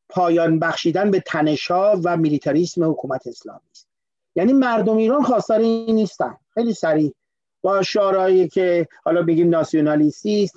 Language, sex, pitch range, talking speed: Persian, male, 170-230 Hz, 125 wpm